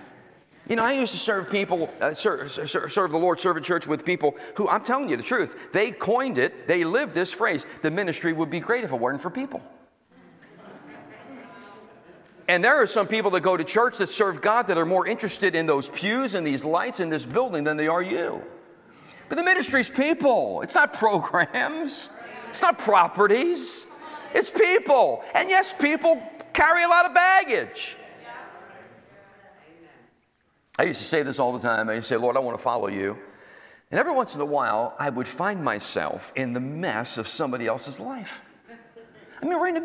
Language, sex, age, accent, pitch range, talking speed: English, male, 40-59, American, 165-260 Hz, 195 wpm